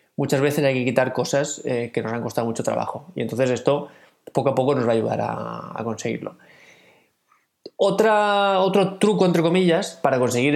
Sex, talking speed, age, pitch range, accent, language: male, 190 wpm, 20-39, 120-155 Hz, Spanish, Spanish